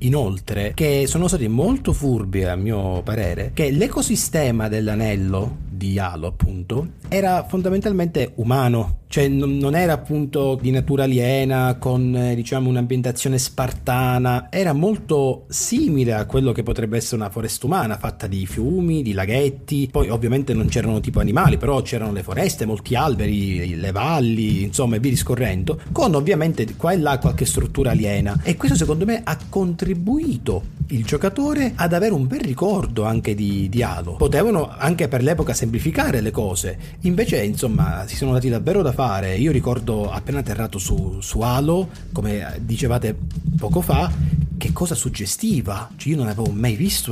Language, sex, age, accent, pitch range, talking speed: Italian, male, 30-49, native, 105-150 Hz, 155 wpm